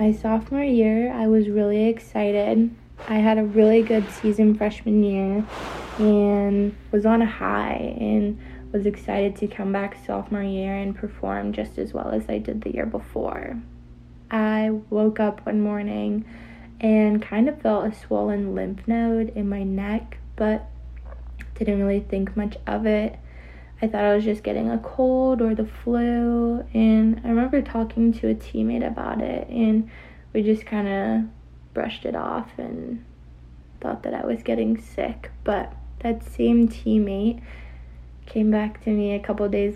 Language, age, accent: English, 20-39, American